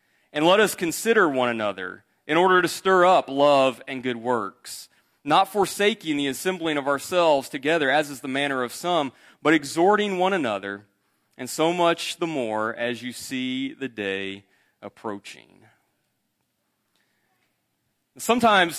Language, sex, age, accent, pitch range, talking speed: English, male, 30-49, American, 130-185 Hz, 140 wpm